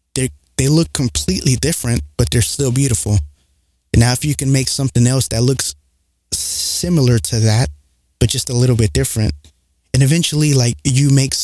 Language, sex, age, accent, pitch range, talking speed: English, male, 20-39, American, 80-125 Hz, 170 wpm